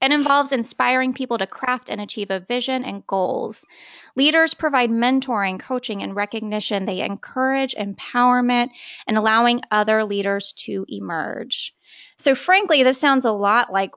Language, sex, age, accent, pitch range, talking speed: English, female, 20-39, American, 195-245 Hz, 145 wpm